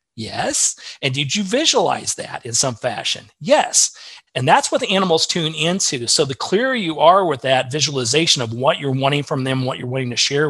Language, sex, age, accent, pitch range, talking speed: English, male, 40-59, American, 125-155 Hz, 205 wpm